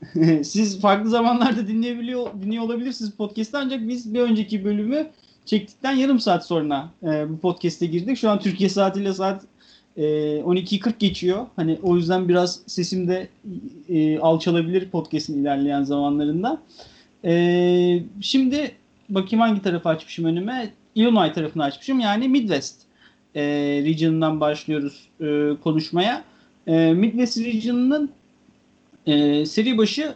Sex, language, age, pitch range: male, Turkish, 40-59, 160-220 Hz